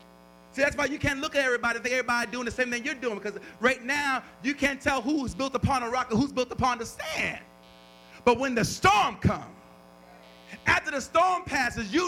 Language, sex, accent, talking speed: English, male, American, 220 wpm